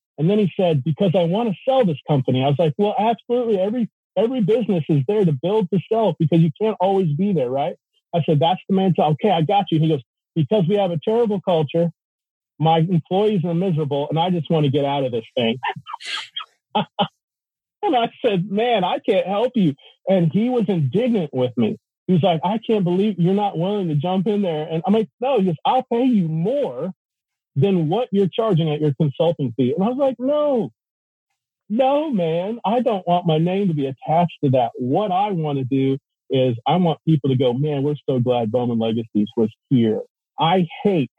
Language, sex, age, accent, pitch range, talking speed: English, male, 40-59, American, 135-200 Hz, 215 wpm